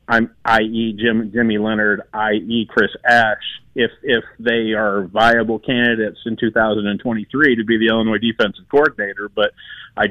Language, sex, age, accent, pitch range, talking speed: English, male, 40-59, American, 110-125 Hz, 140 wpm